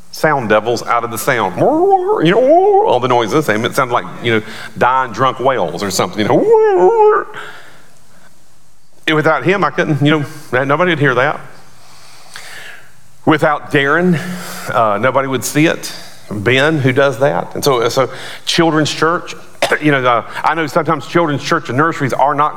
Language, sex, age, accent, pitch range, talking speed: English, male, 40-59, American, 115-155 Hz, 170 wpm